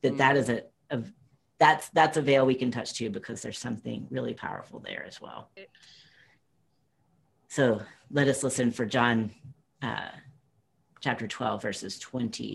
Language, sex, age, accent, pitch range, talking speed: English, female, 40-59, American, 125-150 Hz, 155 wpm